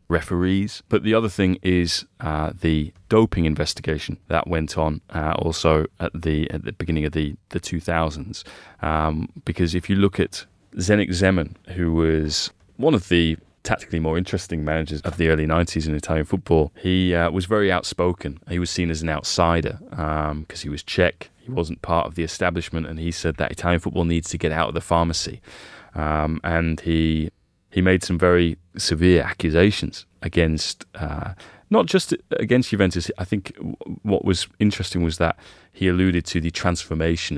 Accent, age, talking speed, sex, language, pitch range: British, 20-39, 175 wpm, male, English, 80-95 Hz